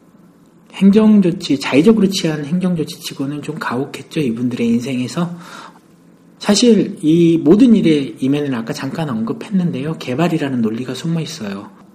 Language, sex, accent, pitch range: Korean, male, native, 140-200 Hz